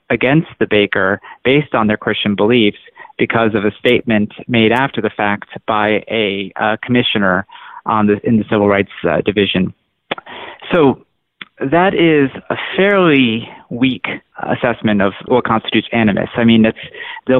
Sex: male